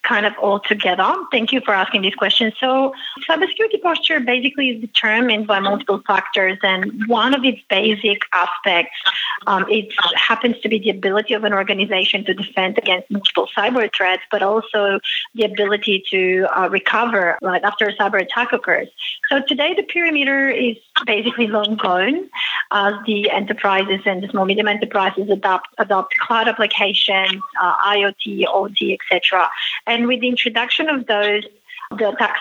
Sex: female